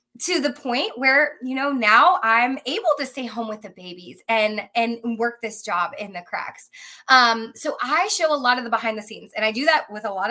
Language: English